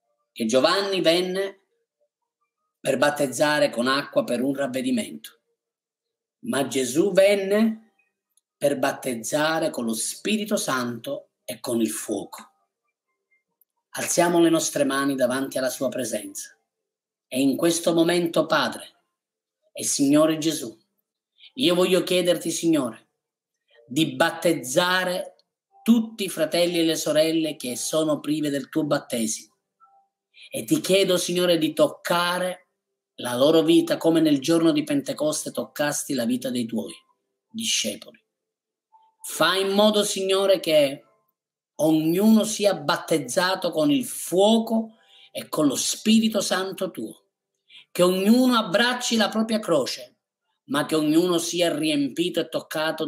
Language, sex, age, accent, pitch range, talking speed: Italian, male, 30-49, native, 160-245 Hz, 120 wpm